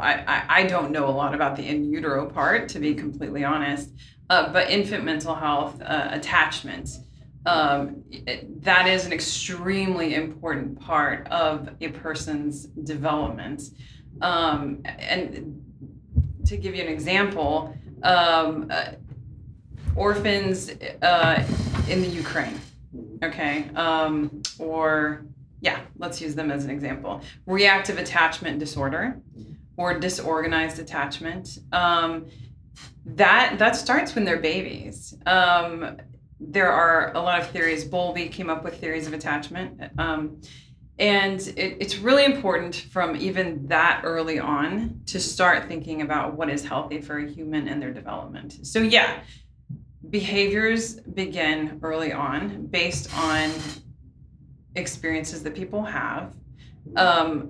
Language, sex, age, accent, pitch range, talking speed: English, female, 20-39, American, 145-175 Hz, 125 wpm